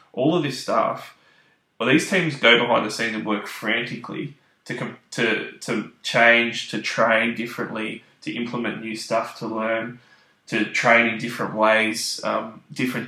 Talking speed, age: 155 wpm, 20-39